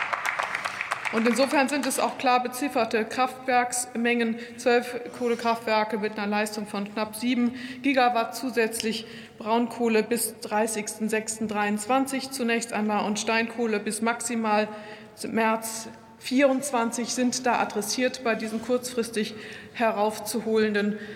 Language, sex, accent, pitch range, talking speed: German, female, German, 225-255 Hz, 100 wpm